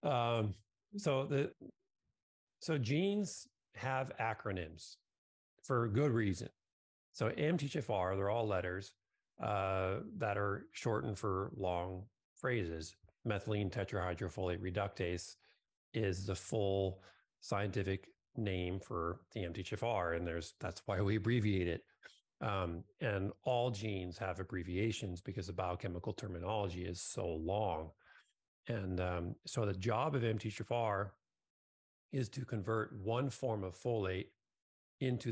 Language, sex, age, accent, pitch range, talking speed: English, male, 40-59, American, 95-115 Hz, 115 wpm